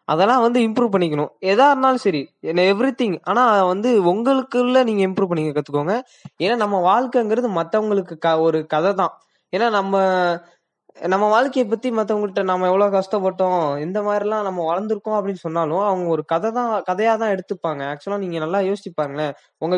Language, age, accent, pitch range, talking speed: Tamil, 20-39, native, 165-210 Hz, 160 wpm